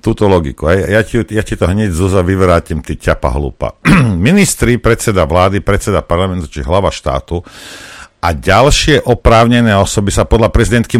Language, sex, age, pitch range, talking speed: Slovak, male, 50-69, 90-130 Hz, 160 wpm